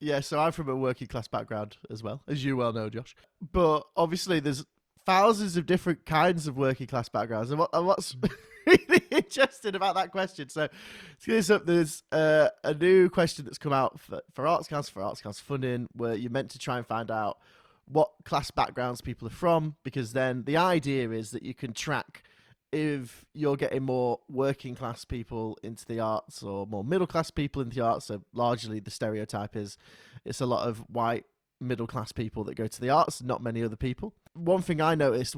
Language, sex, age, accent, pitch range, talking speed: English, male, 20-39, British, 120-165 Hz, 205 wpm